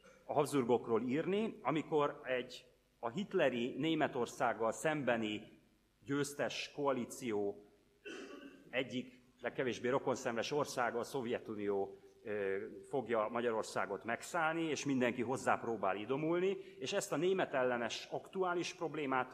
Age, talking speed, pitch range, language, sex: 30-49, 95 wpm, 105-160 Hz, Hungarian, male